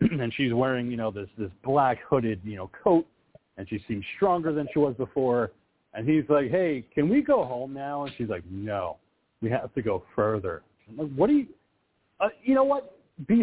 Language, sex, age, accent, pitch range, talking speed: English, male, 40-59, American, 115-160 Hz, 215 wpm